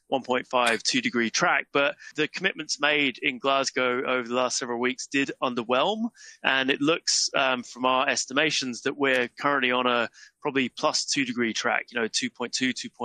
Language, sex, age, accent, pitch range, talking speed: English, male, 20-39, British, 120-145 Hz, 160 wpm